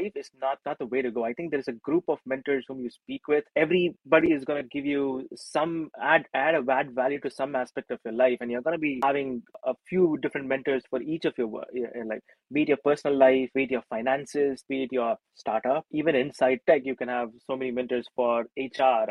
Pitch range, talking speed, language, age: 125-150 Hz, 240 wpm, English, 30-49